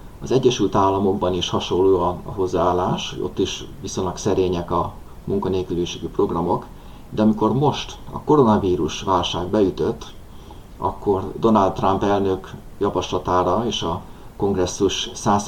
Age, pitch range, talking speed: 30-49, 90-100 Hz, 110 wpm